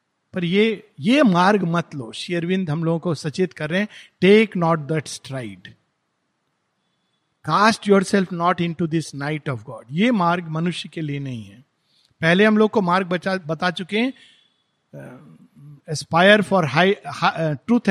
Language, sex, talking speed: Hindi, male, 145 wpm